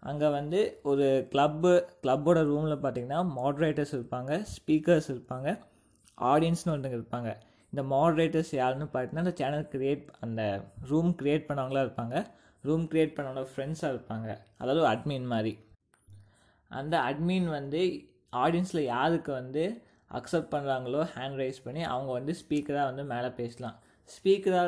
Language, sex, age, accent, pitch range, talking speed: Tamil, male, 20-39, native, 125-155 Hz, 125 wpm